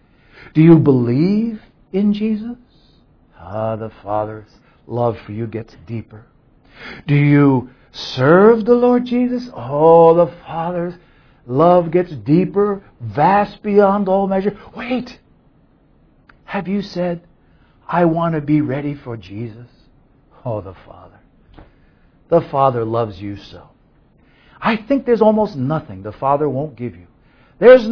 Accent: American